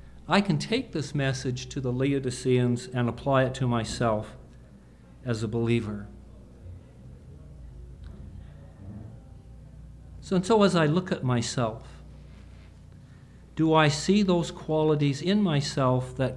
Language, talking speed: English, 115 wpm